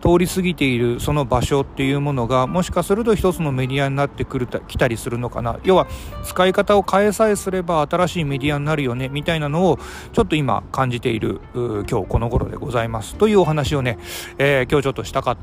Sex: male